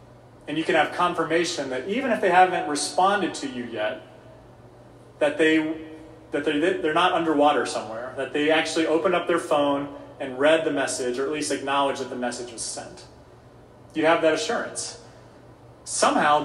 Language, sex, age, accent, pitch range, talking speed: English, male, 30-49, American, 140-175 Hz, 170 wpm